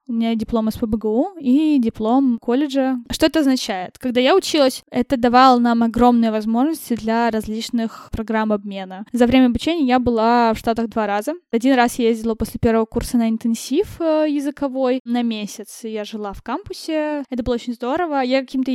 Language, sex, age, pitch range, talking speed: Russian, female, 10-29, 225-260 Hz, 170 wpm